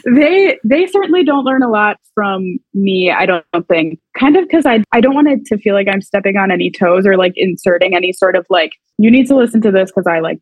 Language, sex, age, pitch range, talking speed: English, female, 20-39, 180-210 Hz, 255 wpm